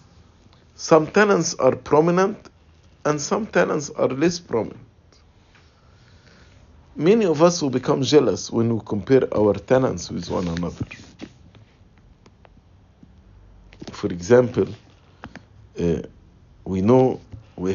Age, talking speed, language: 50-69, 100 wpm, English